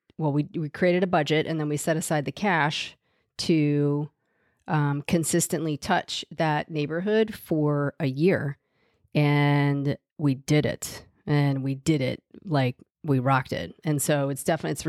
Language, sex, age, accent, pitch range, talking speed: English, female, 40-59, American, 150-180 Hz, 155 wpm